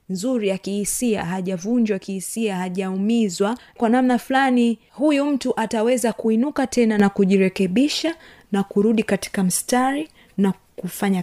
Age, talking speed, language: 20-39, 120 wpm, Swahili